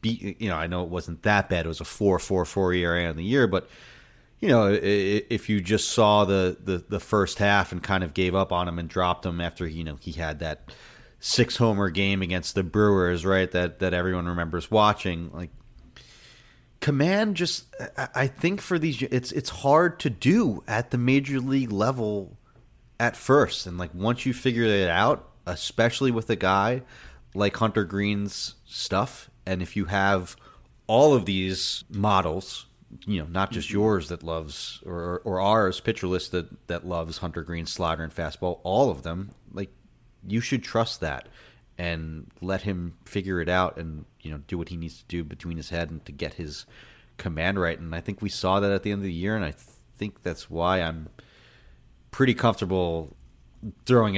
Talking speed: 195 wpm